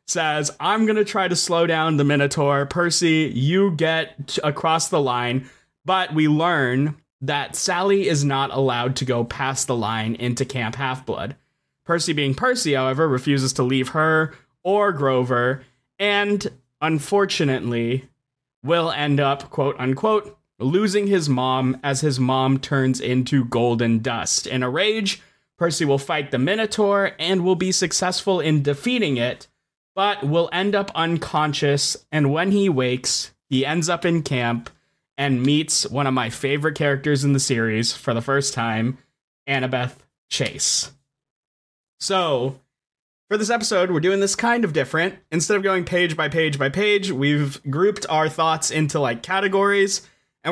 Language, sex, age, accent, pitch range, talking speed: English, male, 20-39, American, 135-175 Hz, 155 wpm